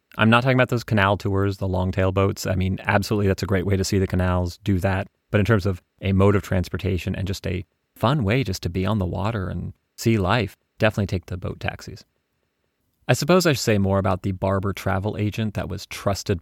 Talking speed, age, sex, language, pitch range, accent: 235 wpm, 30-49, male, English, 95-105 Hz, American